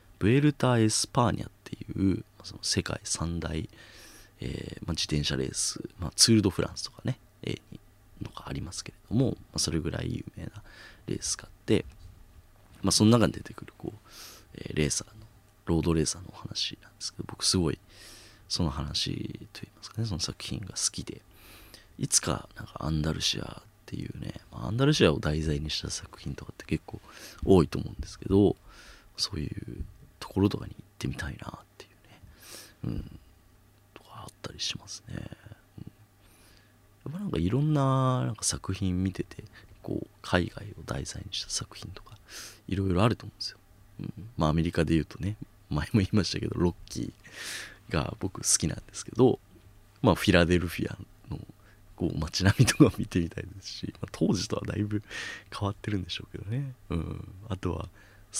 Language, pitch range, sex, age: Japanese, 85-110 Hz, male, 30-49